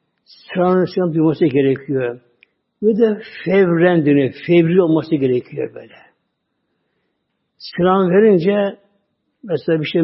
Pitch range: 150-200 Hz